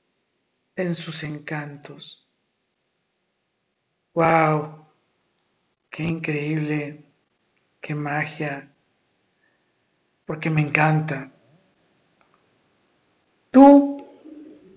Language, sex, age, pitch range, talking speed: Spanish, male, 60-79, 155-200 Hz, 50 wpm